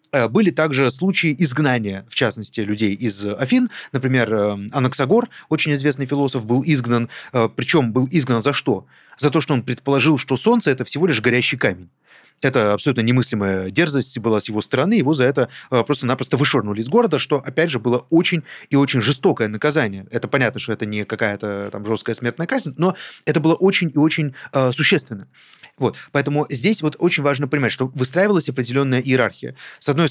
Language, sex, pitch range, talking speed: Russian, male, 115-155 Hz, 175 wpm